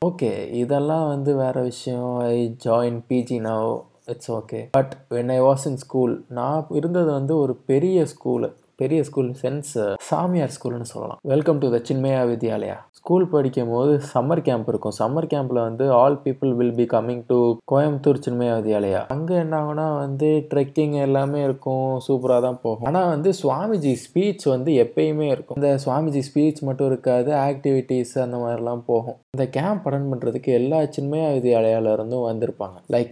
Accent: native